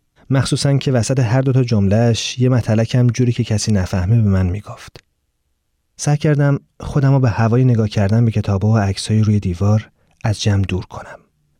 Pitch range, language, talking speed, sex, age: 100-135 Hz, Persian, 165 wpm, male, 30-49